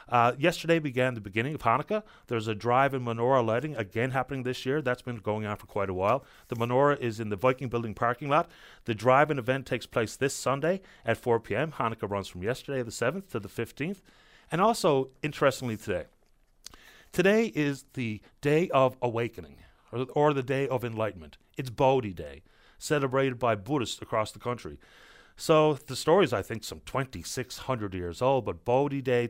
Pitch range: 115-155 Hz